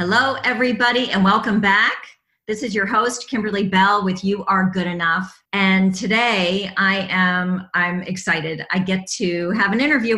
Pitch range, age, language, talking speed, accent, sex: 155-205 Hz, 40-59, English, 165 wpm, American, female